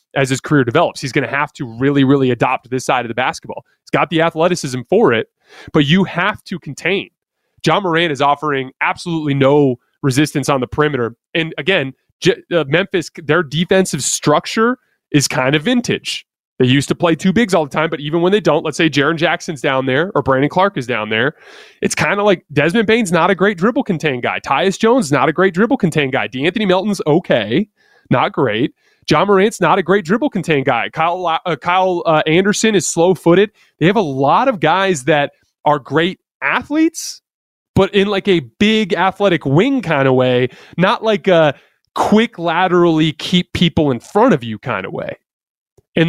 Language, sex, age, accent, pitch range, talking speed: English, male, 30-49, American, 145-190 Hz, 200 wpm